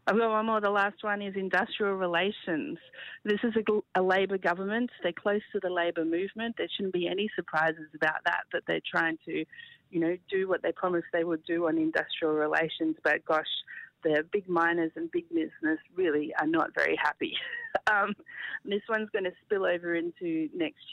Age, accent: 40-59, Australian